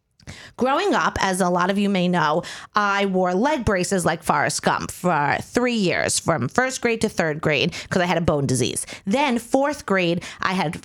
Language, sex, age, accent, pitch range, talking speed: English, female, 30-49, American, 180-245 Hz, 200 wpm